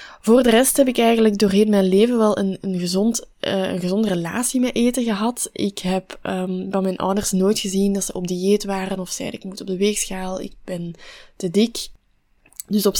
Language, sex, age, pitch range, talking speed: Dutch, female, 20-39, 185-215 Hz, 210 wpm